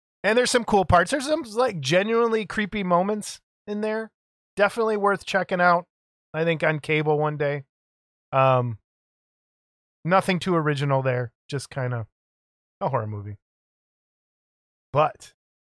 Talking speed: 135 wpm